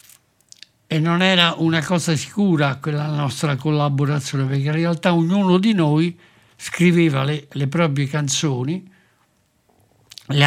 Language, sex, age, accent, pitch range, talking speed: Italian, male, 60-79, native, 135-170 Hz, 120 wpm